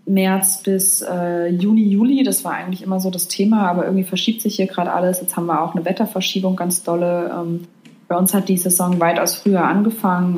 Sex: female